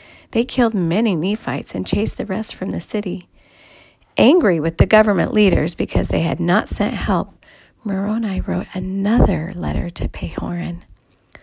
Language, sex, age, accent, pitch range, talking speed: English, female, 40-59, American, 185-255 Hz, 145 wpm